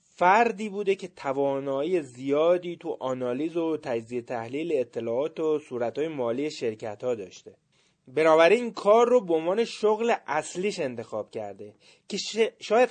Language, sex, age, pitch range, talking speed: Persian, male, 30-49, 140-200 Hz, 130 wpm